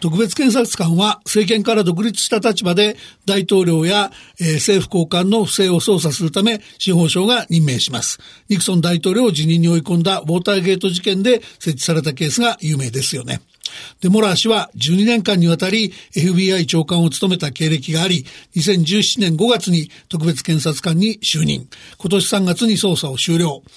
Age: 60-79